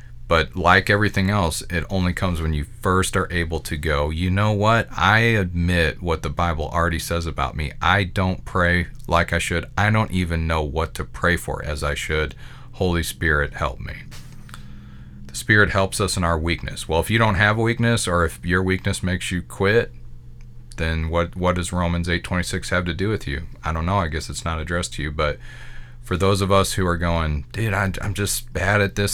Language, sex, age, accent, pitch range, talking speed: English, male, 40-59, American, 80-105 Hz, 210 wpm